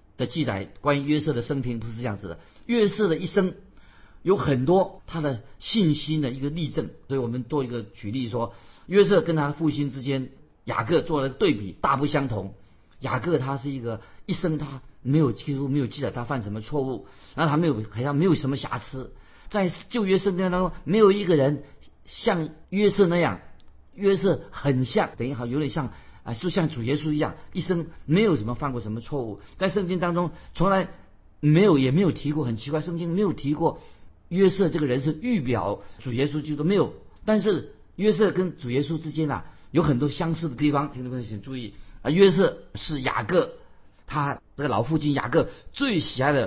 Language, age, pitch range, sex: Chinese, 50-69, 125-170 Hz, male